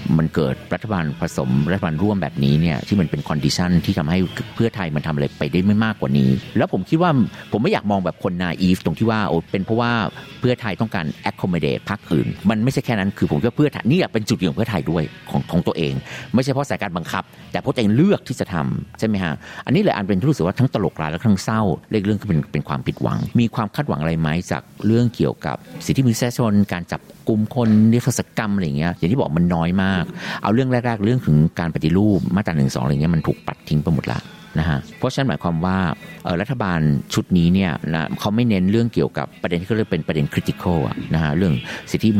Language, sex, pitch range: Thai, male, 80-110 Hz